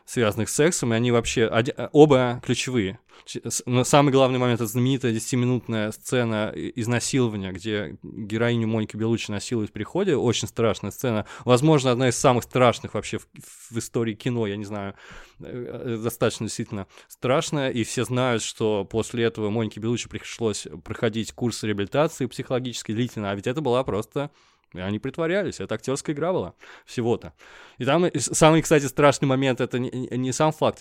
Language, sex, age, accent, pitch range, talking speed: Russian, male, 20-39, native, 110-130 Hz, 160 wpm